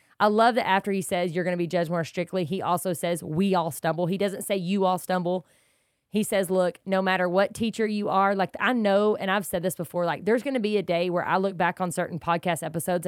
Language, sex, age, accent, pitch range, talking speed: English, female, 20-39, American, 170-205 Hz, 260 wpm